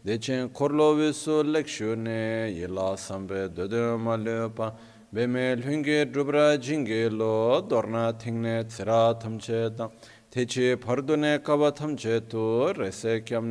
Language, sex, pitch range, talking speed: Italian, male, 115-130 Hz, 85 wpm